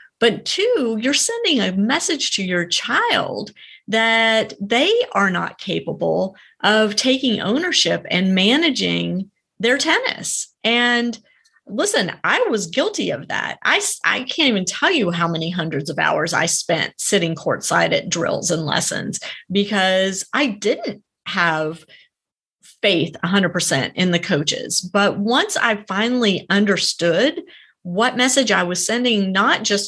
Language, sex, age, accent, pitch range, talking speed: English, female, 30-49, American, 180-255 Hz, 135 wpm